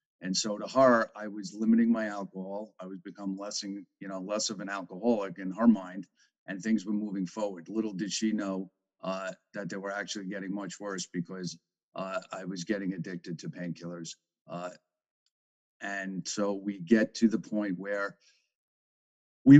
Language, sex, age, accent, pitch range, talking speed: English, male, 50-69, American, 95-115 Hz, 180 wpm